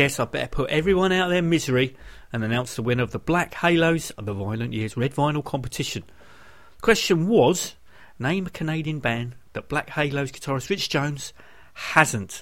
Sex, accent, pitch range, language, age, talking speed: male, British, 115-165 Hz, English, 40-59, 185 wpm